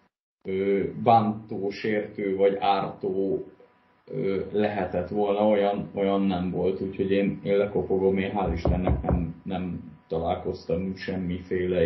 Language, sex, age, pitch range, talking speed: Hungarian, male, 20-39, 95-110 Hz, 100 wpm